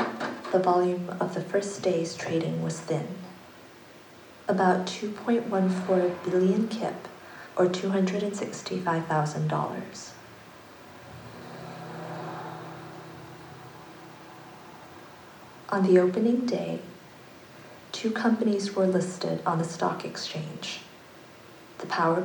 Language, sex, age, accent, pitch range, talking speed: English, female, 40-59, American, 165-190 Hz, 80 wpm